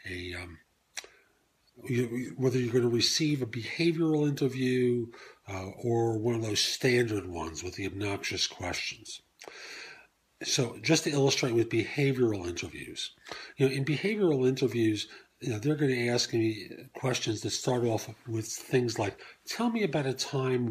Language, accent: English, American